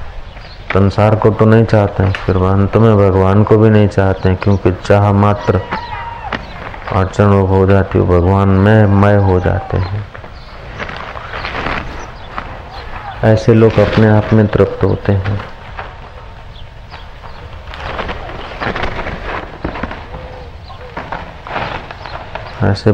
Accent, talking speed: native, 95 wpm